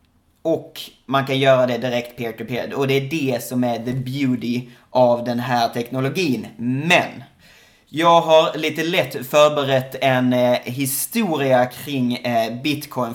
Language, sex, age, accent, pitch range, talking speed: English, male, 30-49, Swedish, 125-155 Hz, 130 wpm